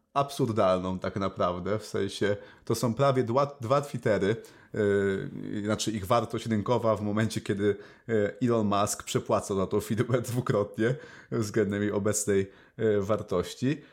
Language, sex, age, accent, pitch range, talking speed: Polish, male, 30-49, native, 110-140 Hz, 130 wpm